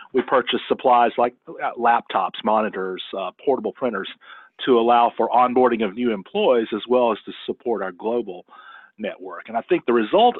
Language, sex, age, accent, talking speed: English, male, 40-59, American, 165 wpm